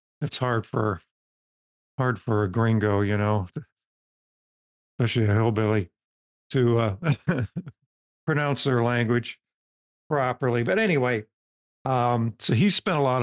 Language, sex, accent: English, male, American